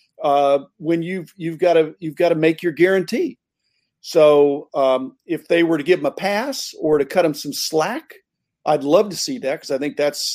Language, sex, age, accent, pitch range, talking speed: English, male, 50-69, American, 145-200 Hz, 215 wpm